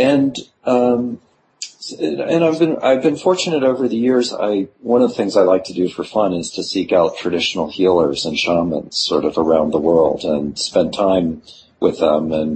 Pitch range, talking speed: 85-105 Hz, 195 wpm